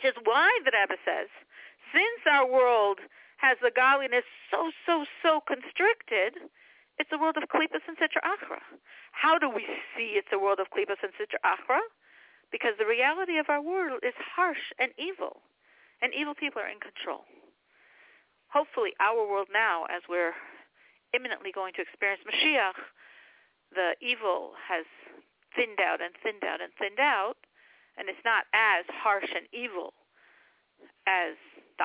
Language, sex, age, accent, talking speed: English, female, 50-69, American, 155 wpm